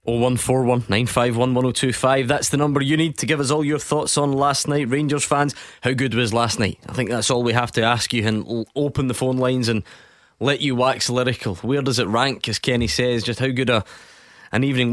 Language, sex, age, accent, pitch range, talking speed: English, male, 20-39, British, 110-130 Hz, 215 wpm